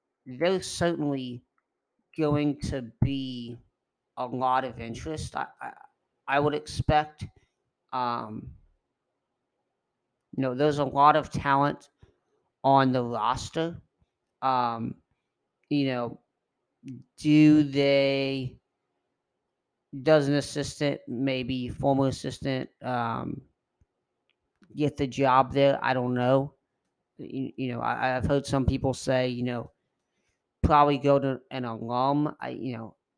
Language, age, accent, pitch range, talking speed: English, 40-59, American, 125-140 Hz, 115 wpm